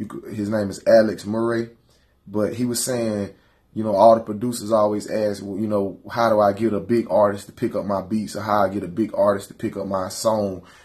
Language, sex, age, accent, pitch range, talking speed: English, male, 20-39, American, 100-120 Hz, 240 wpm